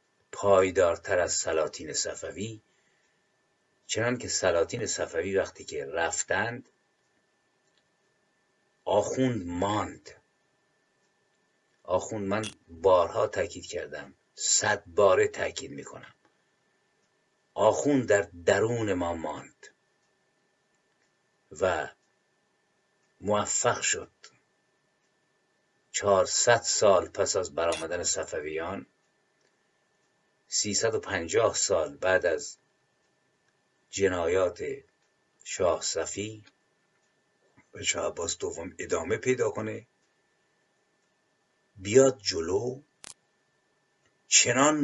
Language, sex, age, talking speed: Persian, male, 50-69, 70 wpm